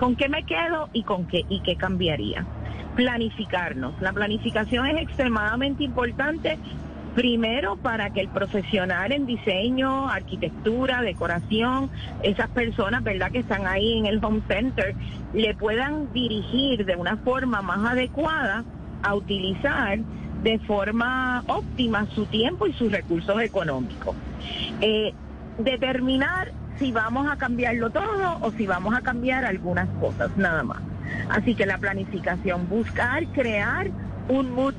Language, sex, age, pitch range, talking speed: Spanish, female, 40-59, 195-250 Hz, 135 wpm